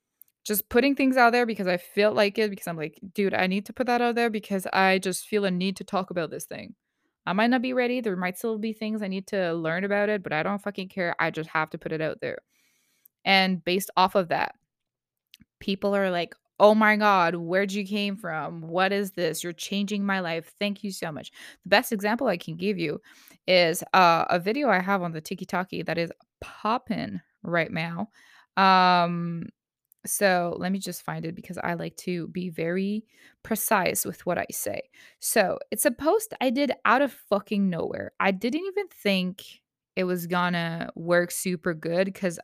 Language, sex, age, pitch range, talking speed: English, female, 20-39, 175-210 Hz, 210 wpm